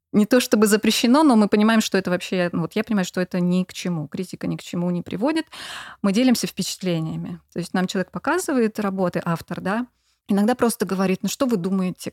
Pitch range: 175-220 Hz